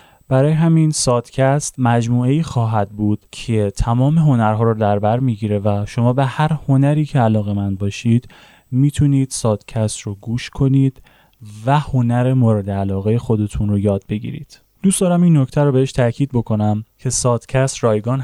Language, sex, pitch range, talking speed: Persian, male, 110-140 Hz, 150 wpm